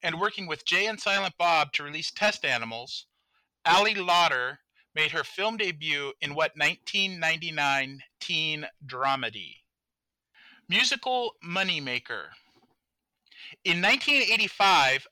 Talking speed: 105 wpm